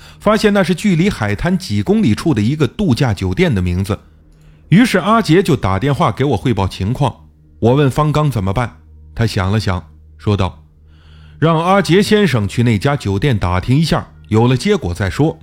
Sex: male